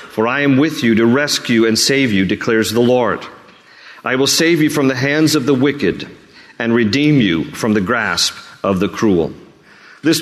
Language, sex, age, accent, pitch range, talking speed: English, male, 40-59, American, 120-140 Hz, 195 wpm